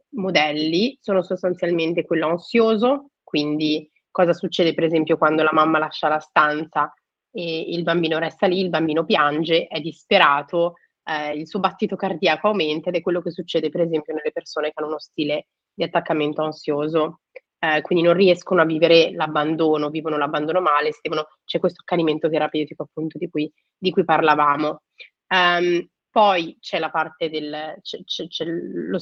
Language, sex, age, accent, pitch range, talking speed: Italian, female, 30-49, native, 155-190 Hz, 150 wpm